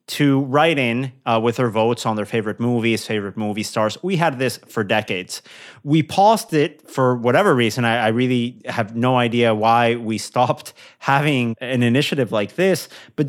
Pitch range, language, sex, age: 115-145 Hz, English, male, 30-49